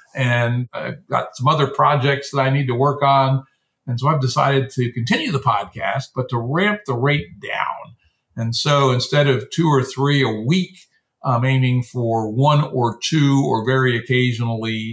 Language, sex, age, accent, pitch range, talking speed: English, male, 50-69, American, 115-140 Hz, 175 wpm